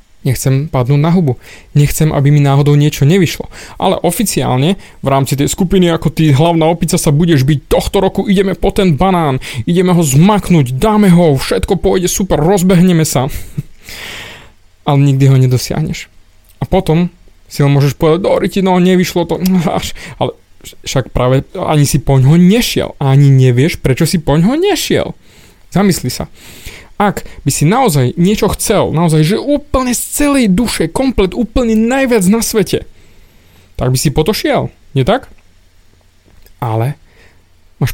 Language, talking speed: Slovak, 150 wpm